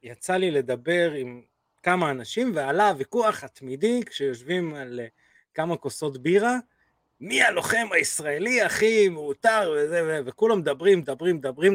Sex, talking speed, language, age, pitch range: male, 135 wpm, Hebrew, 30-49, 130-170 Hz